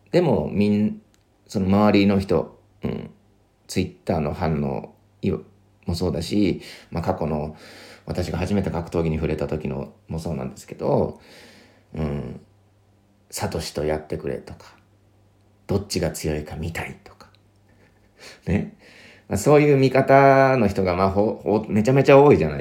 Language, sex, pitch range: Japanese, male, 90-105 Hz